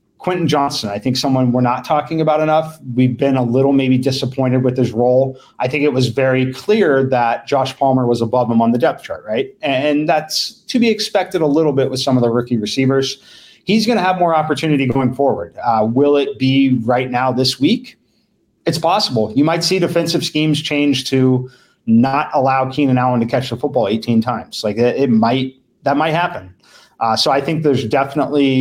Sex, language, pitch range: male, English, 125-150 Hz